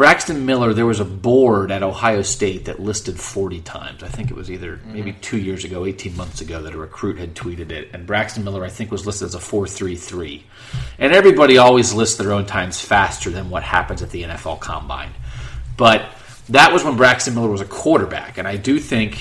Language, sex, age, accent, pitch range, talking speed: English, male, 30-49, American, 95-120 Hz, 215 wpm